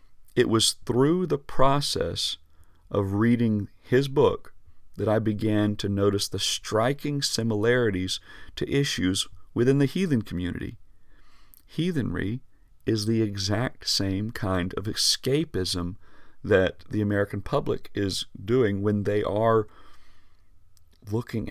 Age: 40-59